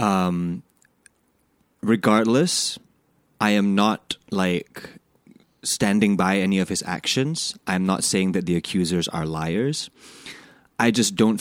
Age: 20-39